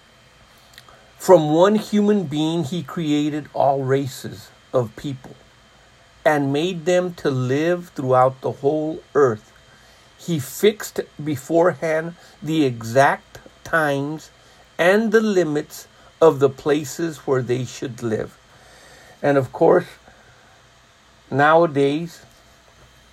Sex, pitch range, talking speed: male, 130-155 Hz, 100 wpm